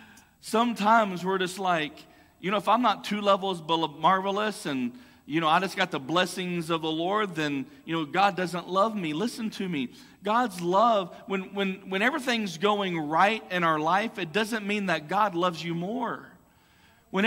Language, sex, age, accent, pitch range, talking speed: English, male, 40-59, American, 175-250 Hz, 185 wpm